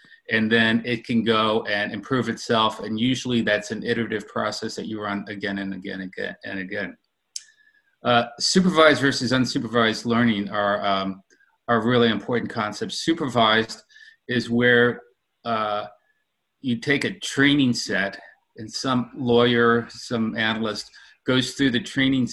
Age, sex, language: 30-49, male, English